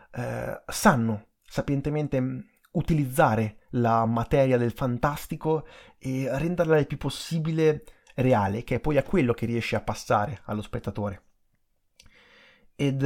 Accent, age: native, 30-49